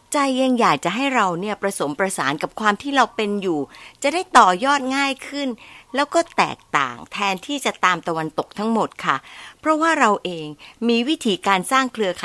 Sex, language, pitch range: female, Thai, 170-240 Hz